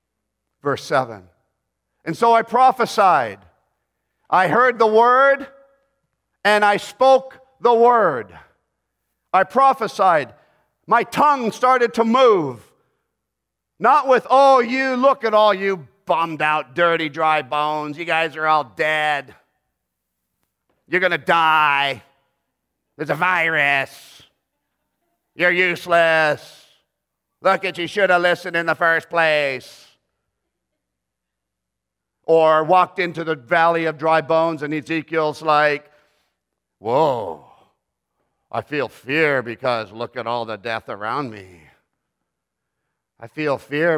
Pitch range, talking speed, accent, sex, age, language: 115-180 Hz, 115 wpm, American, male, 50-69, English